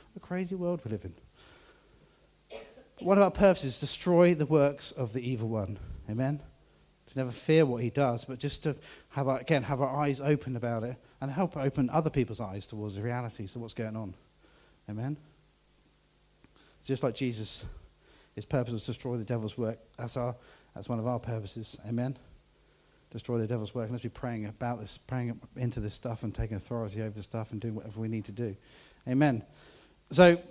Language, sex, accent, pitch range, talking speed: English, male, British, 115-155 Hz, 200 wpm